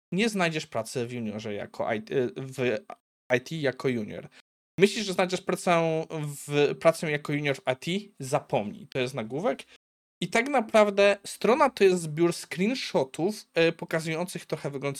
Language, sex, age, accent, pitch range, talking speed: Polish, male, 20-39, native, 135-185 Hz, 150 wpm